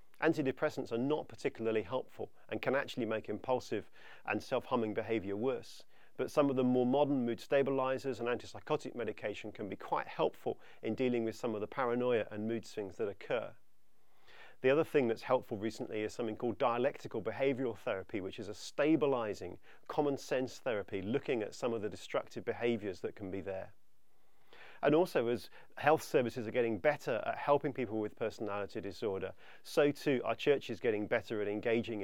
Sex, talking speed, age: male, 175 wpm, 40-59